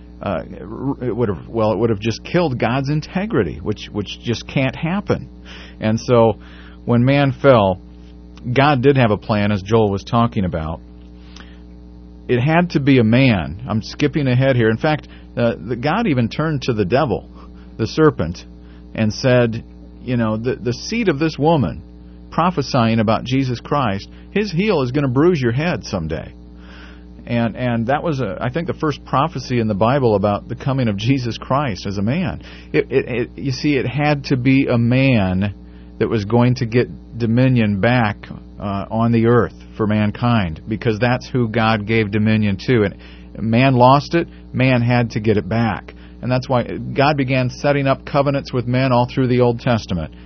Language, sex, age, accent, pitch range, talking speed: English, male, 40-59, American, 90-130 Hz, 185 wpm